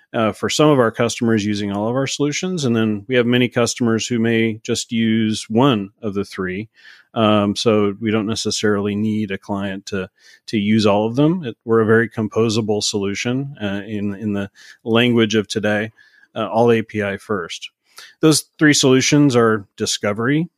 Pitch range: 105-120 Hz